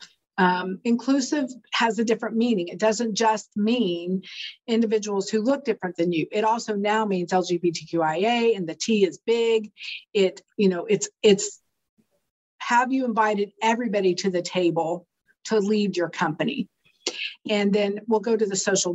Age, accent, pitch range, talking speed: 50-69, American, 185-225 Hz, 155 wpm